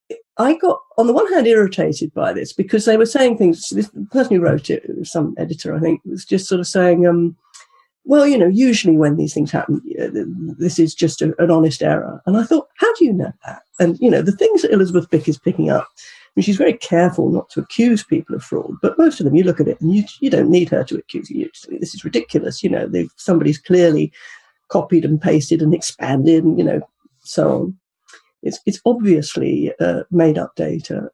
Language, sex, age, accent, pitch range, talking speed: English, female, 50-69, British, 160-215 Hz, 220 wpm